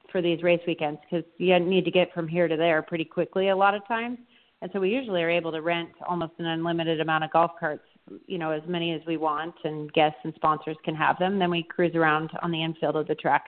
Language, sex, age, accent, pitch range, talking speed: English, female, 30-49, American, 160-180 Hz, 260 wpm